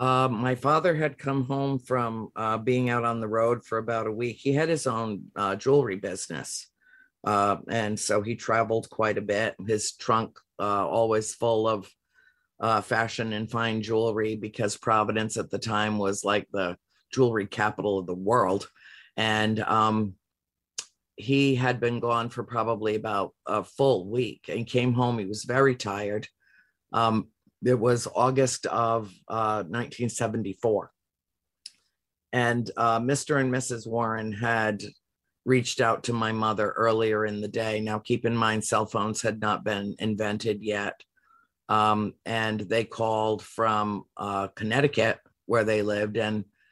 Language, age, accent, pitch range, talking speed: English, 50-69, American, 105-120 Hz, 155 wpm